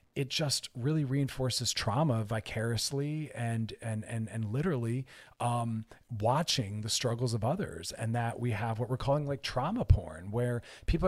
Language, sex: English, male